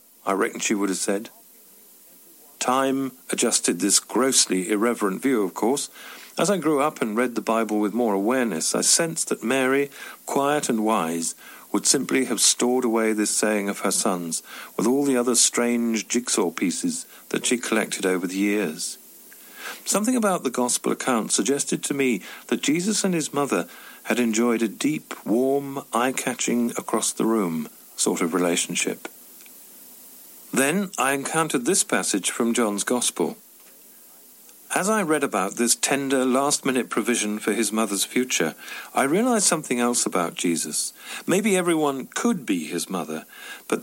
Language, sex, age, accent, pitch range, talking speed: English, male, 50-69, British, 115-145 Hz, 150 wpm